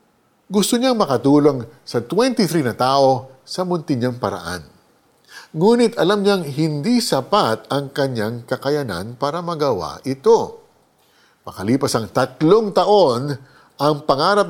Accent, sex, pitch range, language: native, male, 125-185 Hz, Filipino